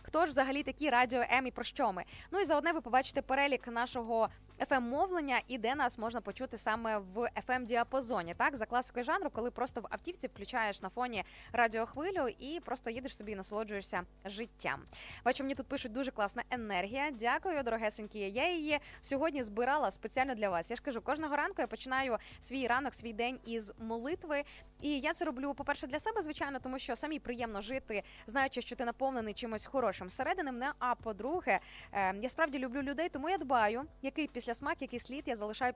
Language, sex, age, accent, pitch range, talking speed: Ukrainian, female, 20-39, native, 225-280 Hz, 185 wpm